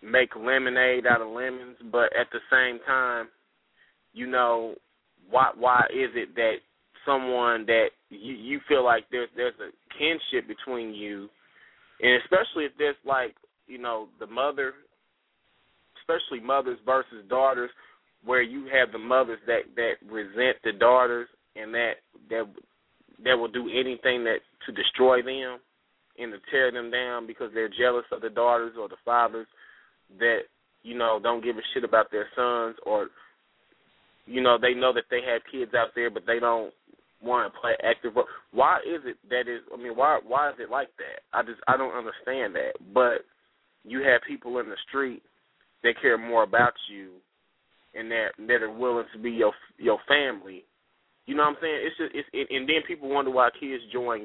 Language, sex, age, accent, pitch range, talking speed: English, male, 20-39, American, 120-135 Hz, 180 wpm